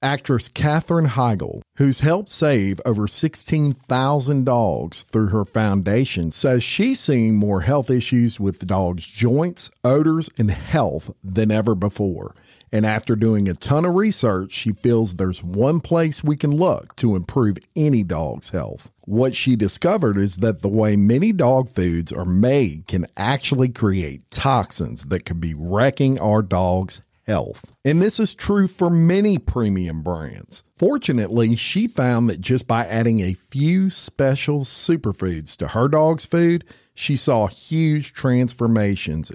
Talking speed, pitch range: 150 wpm, 95-145 Hz